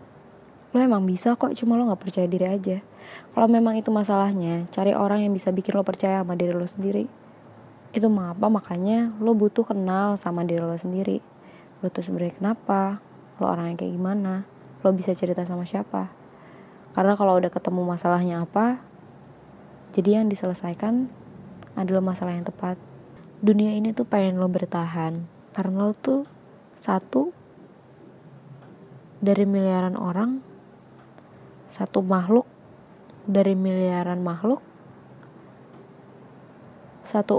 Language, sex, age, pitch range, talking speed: Indonesian, female, 20-39, 180-215 Hz, 130 wpm